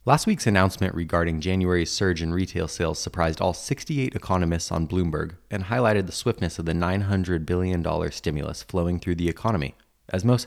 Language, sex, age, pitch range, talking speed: English, male, 20-39, 85-105 Hz, 170 wpm